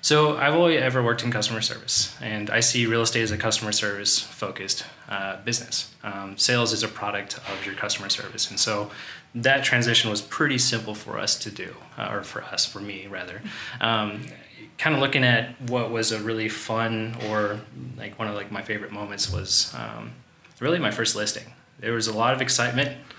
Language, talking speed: English, 195 wpm